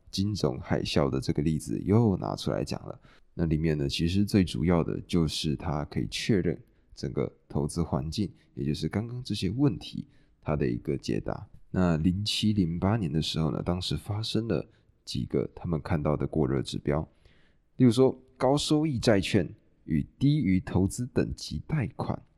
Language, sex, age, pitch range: Chinese, male, 20-39, 80-110 Hz